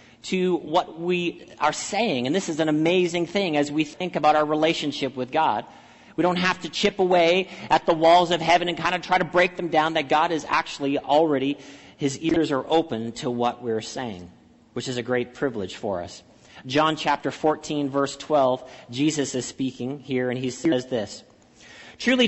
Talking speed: 195 wpm